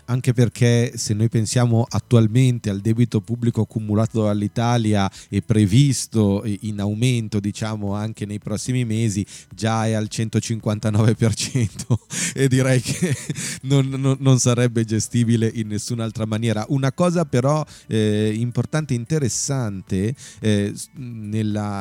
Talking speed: 120 wpm